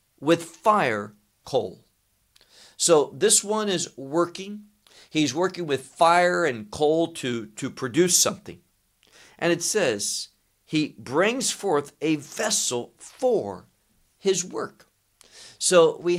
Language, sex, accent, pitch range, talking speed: English, male, American, 120-175 Hz, 115 wpm